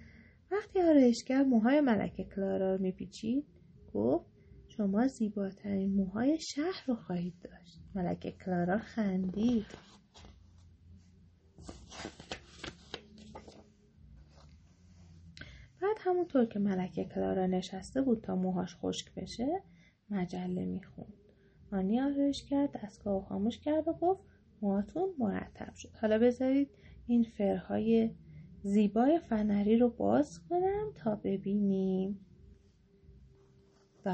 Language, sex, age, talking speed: English, female, 30-49, 100 wpm